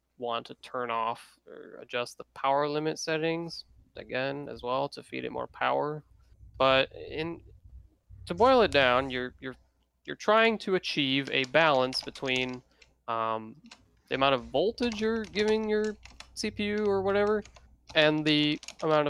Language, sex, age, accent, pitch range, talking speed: English, male, 20-39, American, 125-170 Hz, 150 wpm